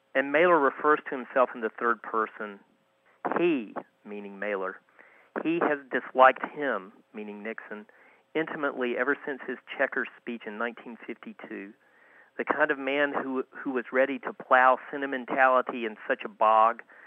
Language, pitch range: English, 115-135 Hz